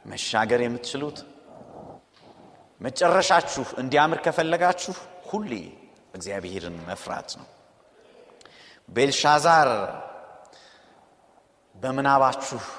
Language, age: Amharic, 30-49